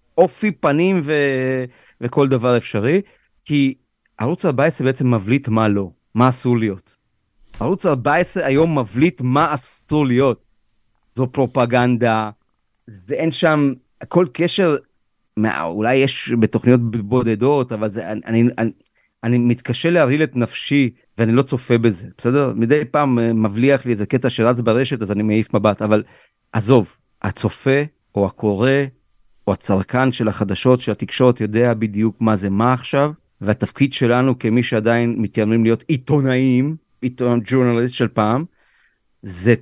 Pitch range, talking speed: 110-135 Hz, 140 wpm